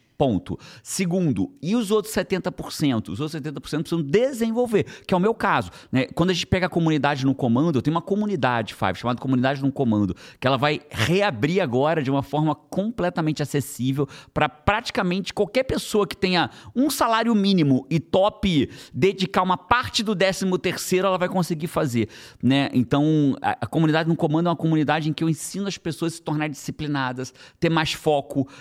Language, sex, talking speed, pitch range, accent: Portuguese, male, 180 wpm, 135-185 Hz, Brazilian